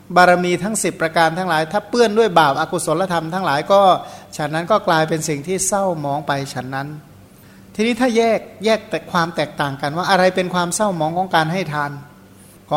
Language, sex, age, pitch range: Thai, male, 60-79, 155-200 Hz